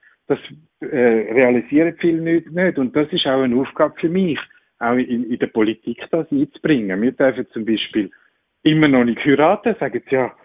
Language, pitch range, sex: German, 120-155 Hz, male